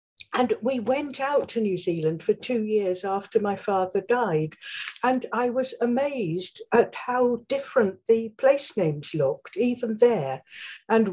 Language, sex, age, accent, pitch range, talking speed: English, female, 60-79, British, 185-275 Hz, 150 wpm